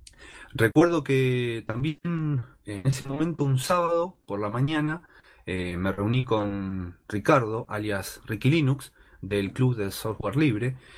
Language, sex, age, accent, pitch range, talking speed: Spanish, male, 30-49, Argentinian, 100-135 Hz, 130 wpm